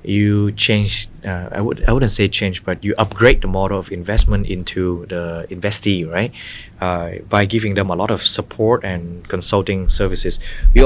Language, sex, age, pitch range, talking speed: Vietnamese, male, 20-39, 95-110 Hz, 175 wpm